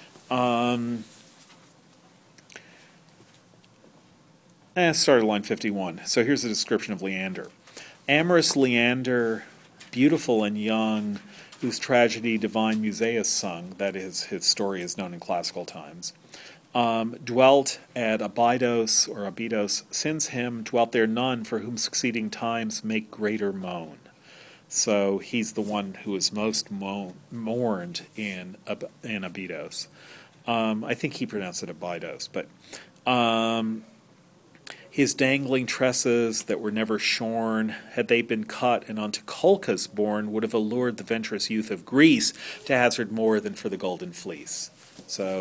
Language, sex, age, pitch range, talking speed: English, male, 40-59, 105-125 Hz, 135 wpm